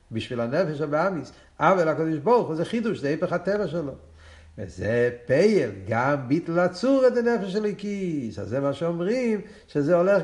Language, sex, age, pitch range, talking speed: Hebrew, male, 50-69, 130-205 Hz, 160 wpm